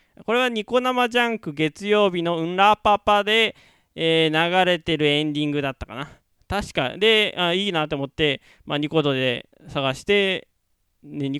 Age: 20-39